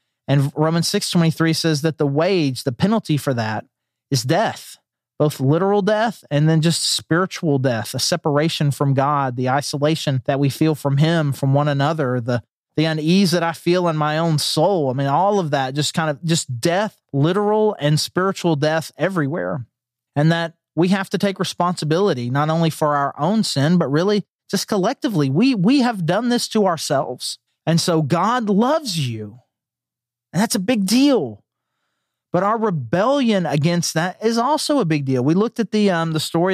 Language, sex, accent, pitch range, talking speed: English, male, American, 140-190 Hz, 185 wpm